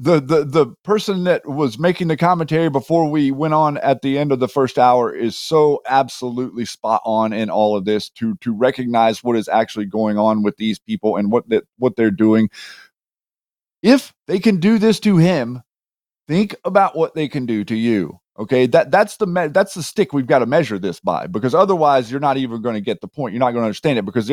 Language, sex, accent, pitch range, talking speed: English, male, American, 120-175 Hz, 230 wpm